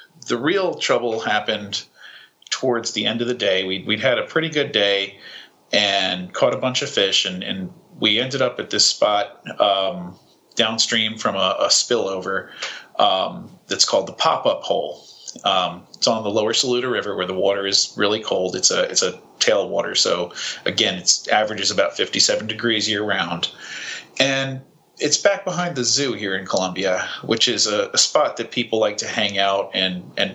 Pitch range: 95-135 Hz